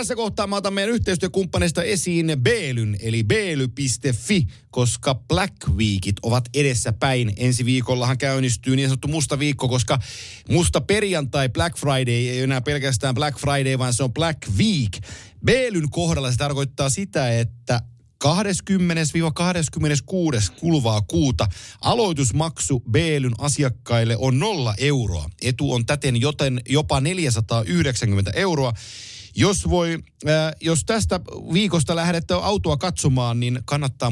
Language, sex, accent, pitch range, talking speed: Finnish, male, native, 120-155 Hz, 125 wpm